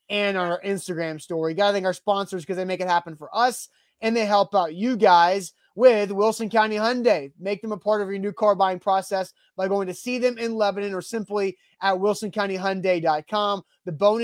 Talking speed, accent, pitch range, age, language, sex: 210 wpm, American, 185-215 Hz, 30-49, English, male